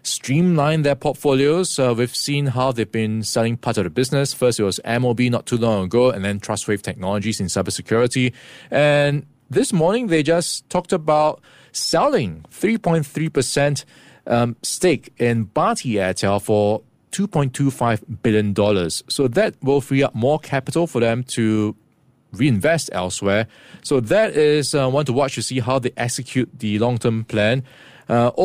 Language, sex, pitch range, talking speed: English, male, 115-145 Hz, 150 wpm